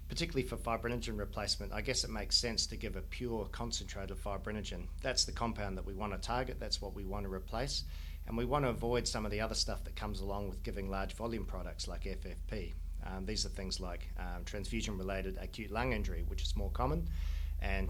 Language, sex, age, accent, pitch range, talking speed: English, male, 40-59, Australian, 70-100 Hz, 215 wpm